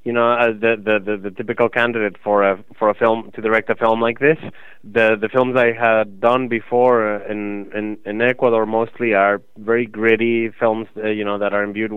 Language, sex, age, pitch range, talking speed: English, male, 20-39, 110-130 Hz, 210 wpm